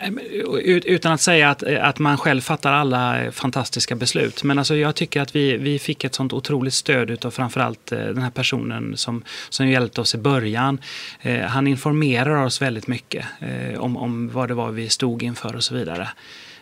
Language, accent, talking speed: Swedish, native, 190 wpm